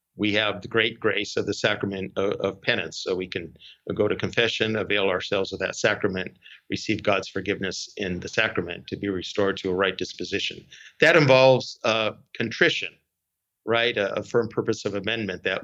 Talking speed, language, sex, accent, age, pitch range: 180 wpm, English, male, American, 50-69, 100-120 Hz